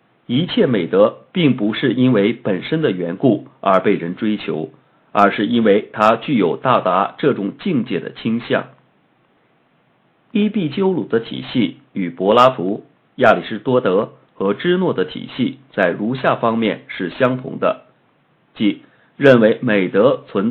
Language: Chinese